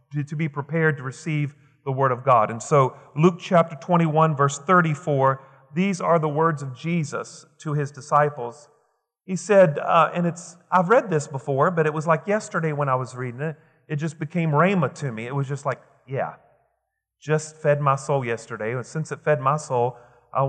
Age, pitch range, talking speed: 40-59, 140-170 Hz, 195 wpm